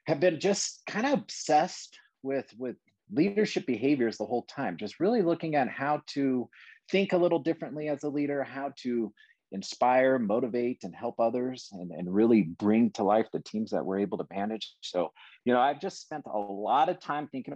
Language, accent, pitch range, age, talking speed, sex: English, American, 110-145 Hz, 30-49, 195 wpm, male